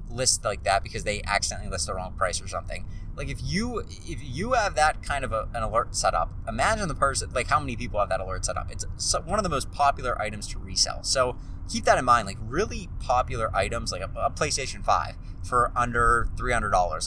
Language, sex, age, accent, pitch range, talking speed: English, male, 20-39, American, 95-120 Hz, 230 wpm